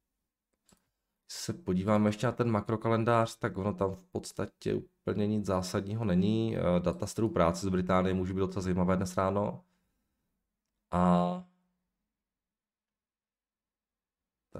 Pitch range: 90-115 Hz